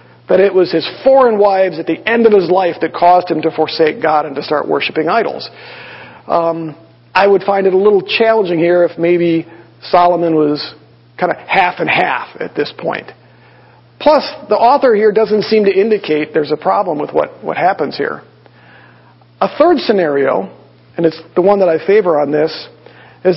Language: English